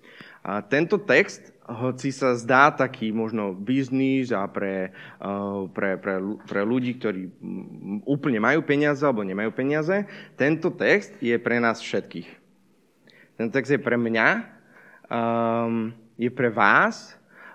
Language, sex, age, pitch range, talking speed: Slovak, male, 20-39, 105-140 Hz, 125 wpm